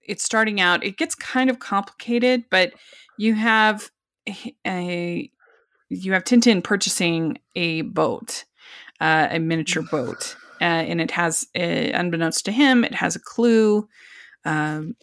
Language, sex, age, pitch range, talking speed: English, female, 20-39, 160-220 Hz, 135 wpm